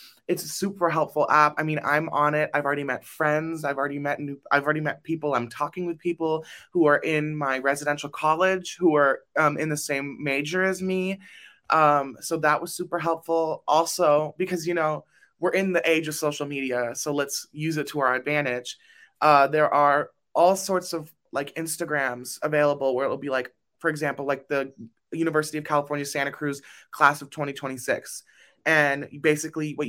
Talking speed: 185 wpm